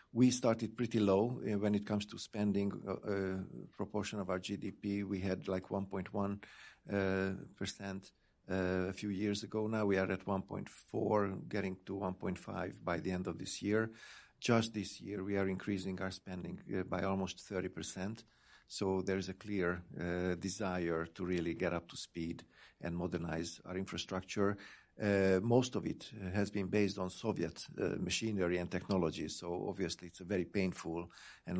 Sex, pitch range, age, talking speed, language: male, 90-100 Hz, 50-69, 175 wpm, English